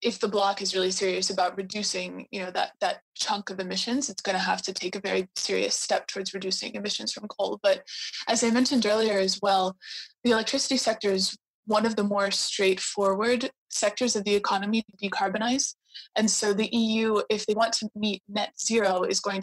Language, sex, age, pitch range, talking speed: English, female, 20-39, 195-220 Hz, 200 wpm